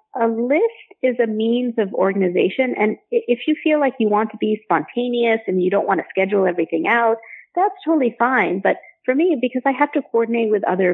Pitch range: 185-245 Hz